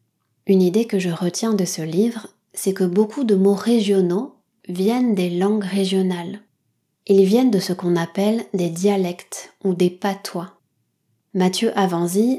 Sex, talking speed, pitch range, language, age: female, 150 wpm, 180-210 Hz, French, 20-39